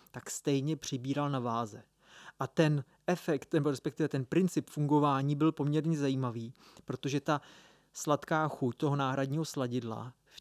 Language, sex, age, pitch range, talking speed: Czech, male, 30-49, 130-155 Hz, 135 wpm